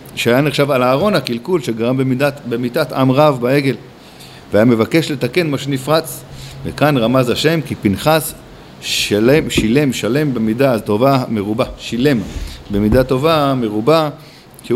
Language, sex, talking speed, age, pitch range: Hebrew, male, 130 wpm, 50-69, 110-150 Hz